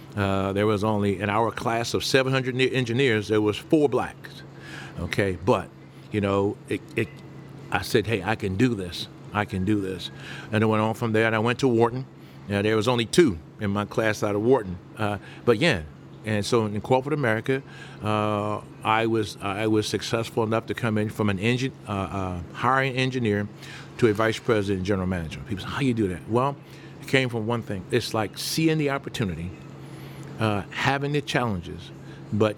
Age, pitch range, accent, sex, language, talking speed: 50-69, 105-125 Hz, American, male, English, 190 wpm